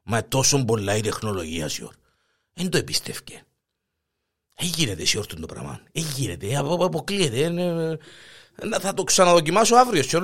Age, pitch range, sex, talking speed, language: 50-69, 135-225 Hz, male, 130 wpm, Greek